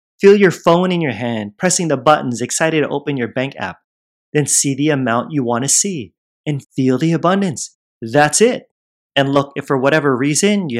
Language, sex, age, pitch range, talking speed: English, male, 30-49, 125-160 Hz, 200 wpm